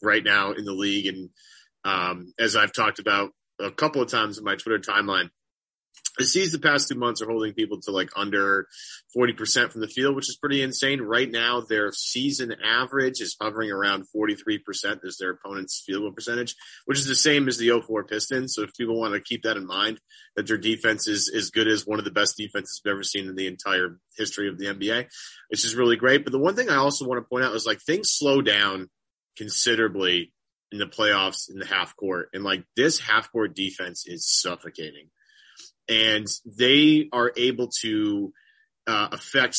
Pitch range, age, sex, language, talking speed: 105-130 Hz, 30-49, male, English, 205 wpm